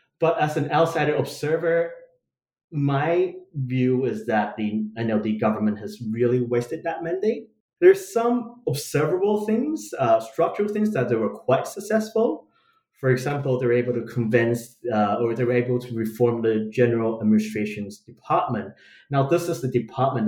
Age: 30-49